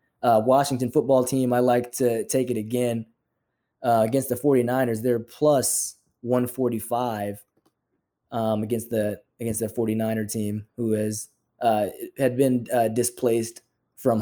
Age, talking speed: 20-39, 135 wpm